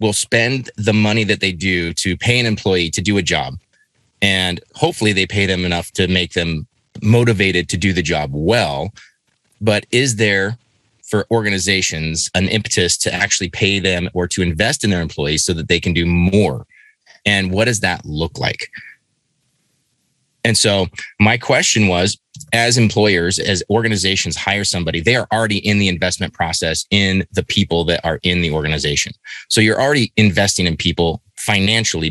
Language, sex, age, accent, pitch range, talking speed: English, male, 30-49, American, 90-110 Hz, 170 wpm